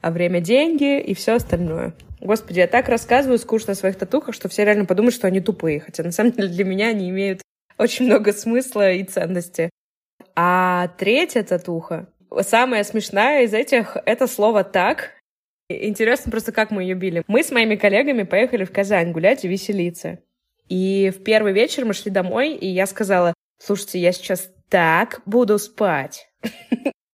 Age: 20-39